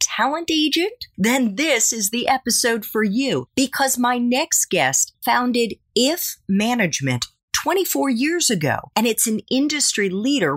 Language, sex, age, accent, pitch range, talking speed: English, female, 40-59, American, 170-255 Hz, 135 wpm